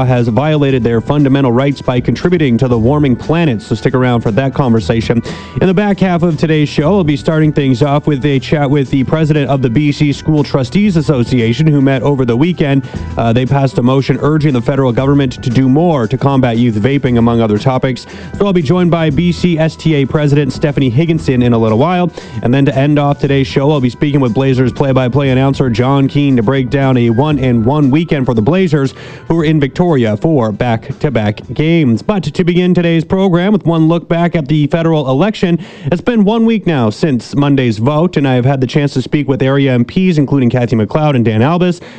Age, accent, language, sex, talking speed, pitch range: 30-49, American, English, male, 215 wpm, 130-160 Hz